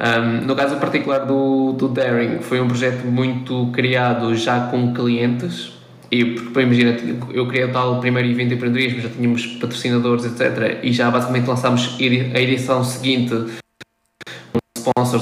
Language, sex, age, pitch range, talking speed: Portuguese, male, 20-39, 120-130 Hz, 140 wpm